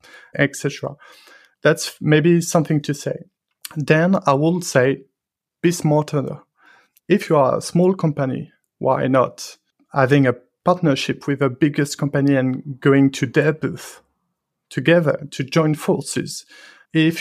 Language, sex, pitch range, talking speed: English, male, 135-165 Hz, 130 wpm